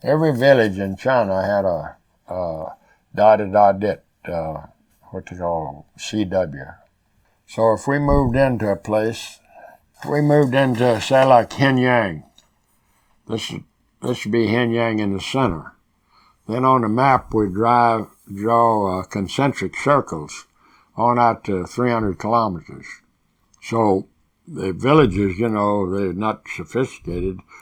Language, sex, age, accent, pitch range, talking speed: English, male, 60-79, American, 90-115 Hz, 130 wpm